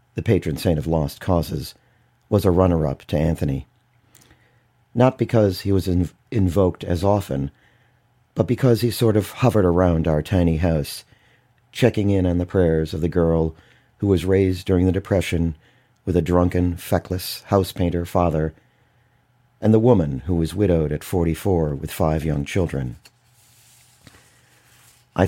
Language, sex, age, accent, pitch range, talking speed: English, male, 40-59, American, 85-120 Hz, 145 wpm